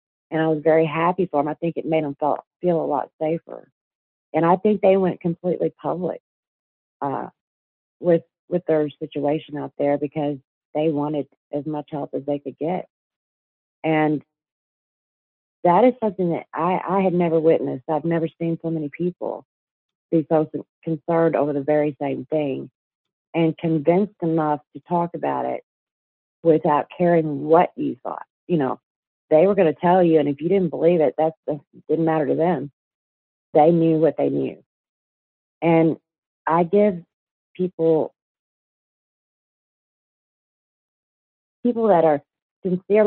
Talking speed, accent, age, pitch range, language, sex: 155 wpm, American, 40-59, 145-170 Hz, English, female